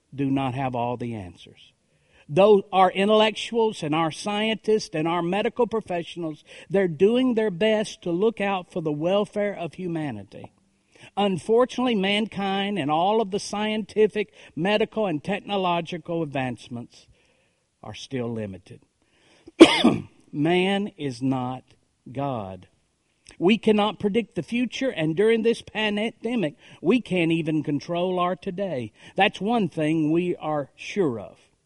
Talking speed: 130 wpm